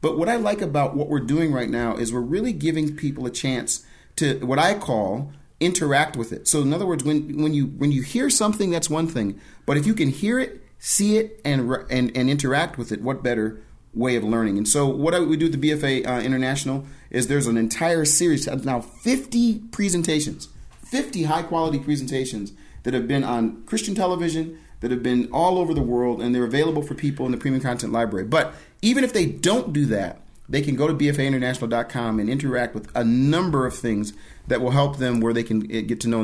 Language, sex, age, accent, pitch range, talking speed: English, male, 40-59, American, 120-160 Hz, 220 wpm